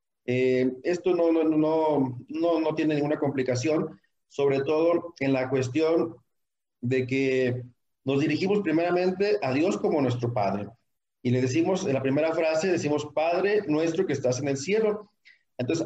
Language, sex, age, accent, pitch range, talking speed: Spanish, male, 40-59, Mexican, 135-180 Hz, 155 wpm